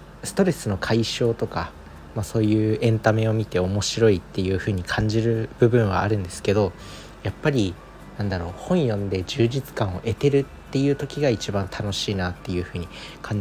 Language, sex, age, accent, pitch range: Japanese, male, 40-59, native, 95-115 Hz